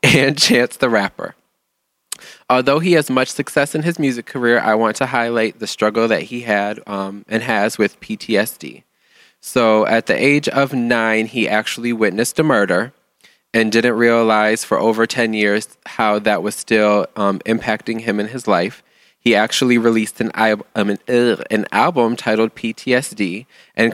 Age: 20-39